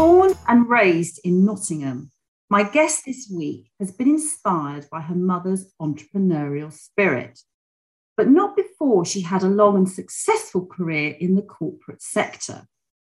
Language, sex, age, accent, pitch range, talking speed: English, female, 40-59, British, 165-270 Hz, 140 wpm